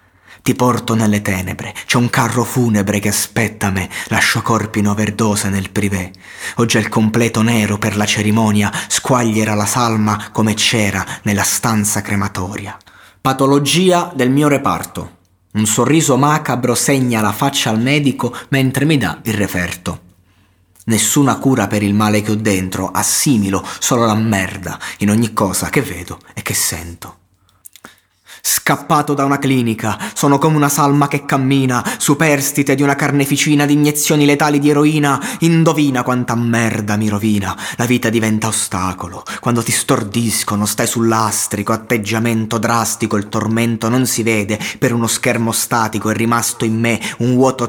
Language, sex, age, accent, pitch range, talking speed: Italian, male, 30-49, native, 105-130 Hz, 150 wpm